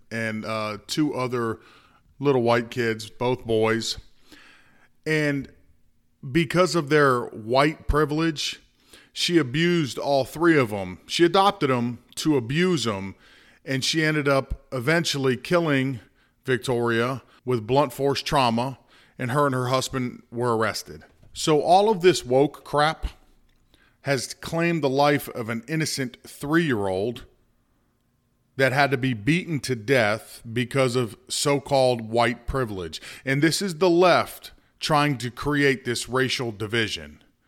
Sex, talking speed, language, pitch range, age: male, 130 wpm, English, 120-145 Hz, 40-59